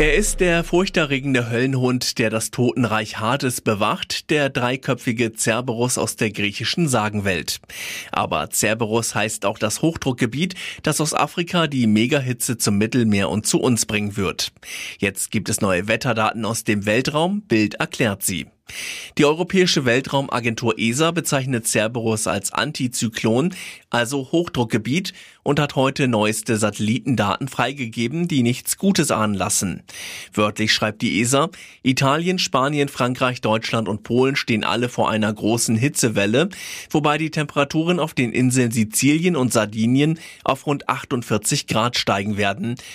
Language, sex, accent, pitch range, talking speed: German, male, German, 110-140 Hz, 135 wpm